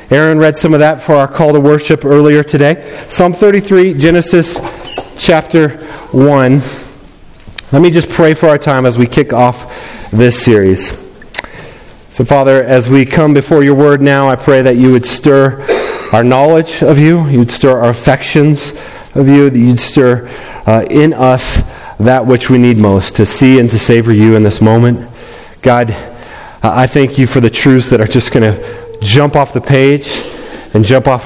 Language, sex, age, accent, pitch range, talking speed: English, male, 40-59, American, 110-145 Hz, 180 wpm